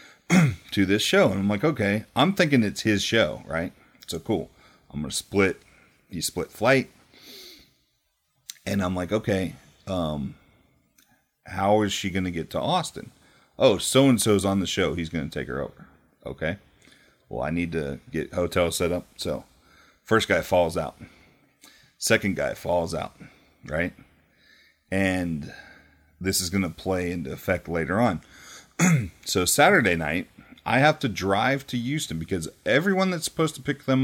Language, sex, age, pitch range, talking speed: English, male, 40-59, 90-130 Hz, 155 wpm